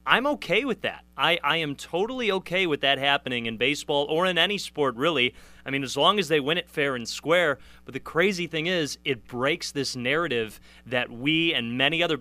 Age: 30-49